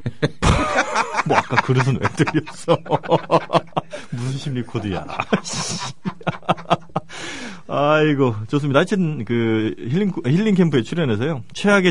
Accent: native